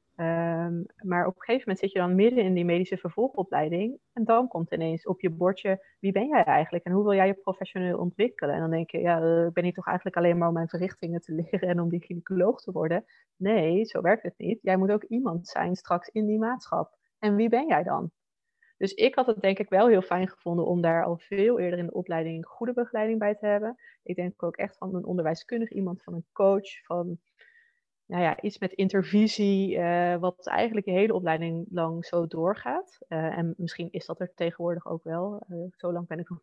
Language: Dutch